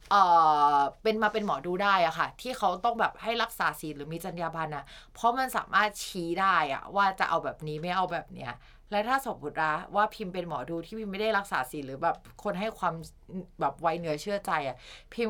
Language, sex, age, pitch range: Thai, female, 20-39, 155-205 Hz